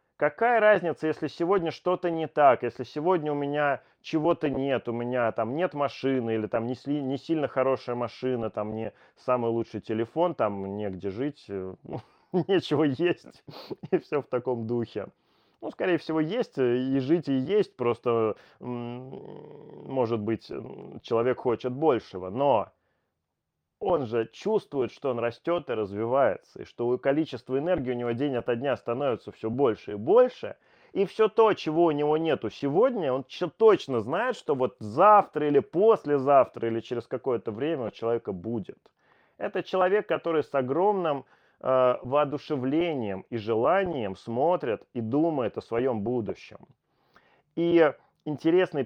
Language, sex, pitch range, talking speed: Russian, male, 120-165 Hz, 145 wpm